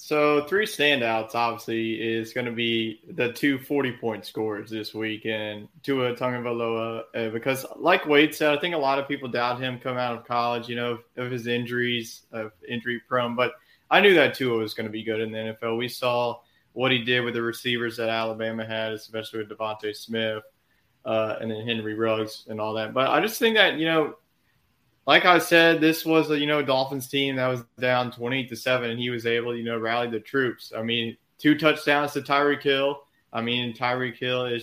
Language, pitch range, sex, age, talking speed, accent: English, 115-130 Hz, male, 20-39, 215 wpm, American